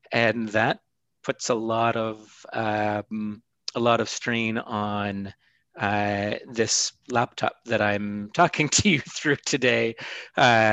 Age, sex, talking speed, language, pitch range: 30-49, male, 130 wpm, English, 105-115 Hz